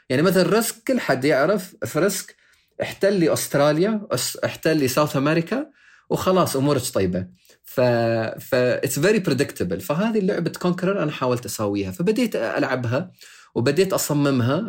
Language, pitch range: Arabic, 120-175 Hz